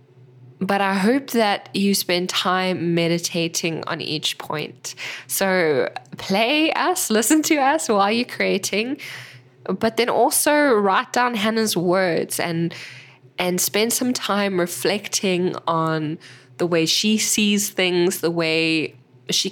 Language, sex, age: English, female, 10-29